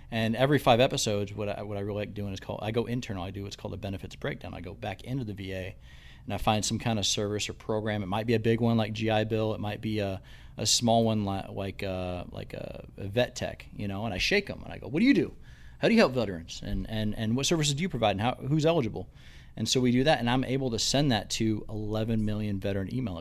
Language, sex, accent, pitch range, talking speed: English, male, American, 100-120 Hz, 275 wpm